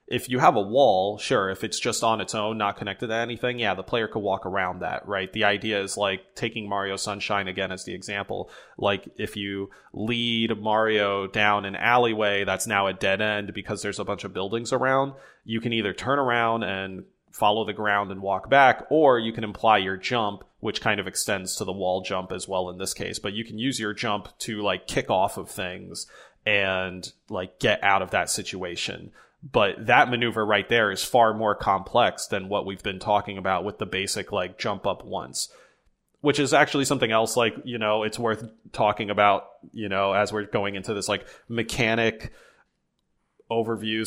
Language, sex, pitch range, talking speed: English, male, 100-115 Hz, 205 wpm